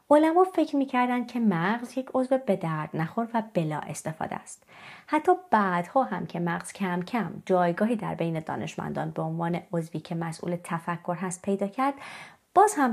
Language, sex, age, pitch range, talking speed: Persian, female, 30-49, 180-265 Hz, 165 wpm